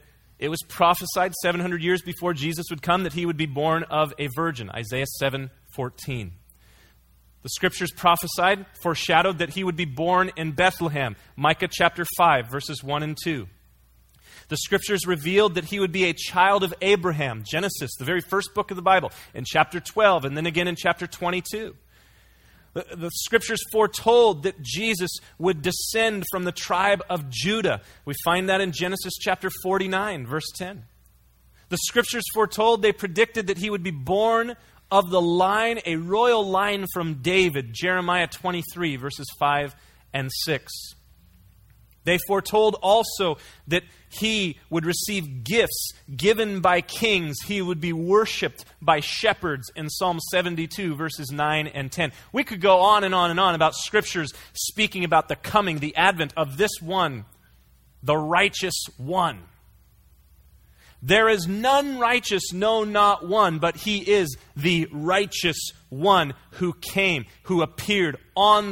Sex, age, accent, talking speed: male, 30-49, American, 150 wpm